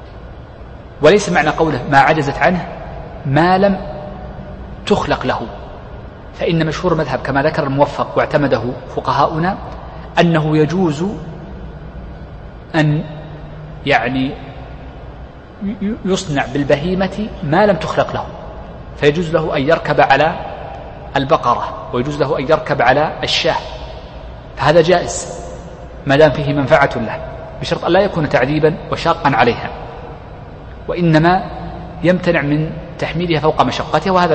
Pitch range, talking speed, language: 135-170 Hz, 105 wpm, Arabic